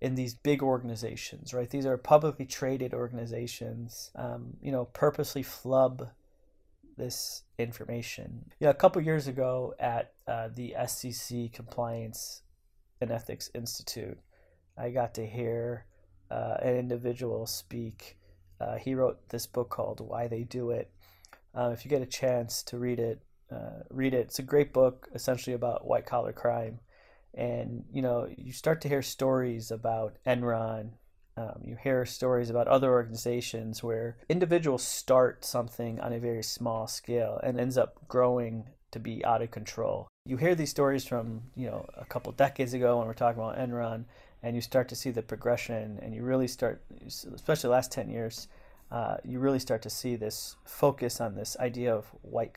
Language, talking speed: English, 170 wpm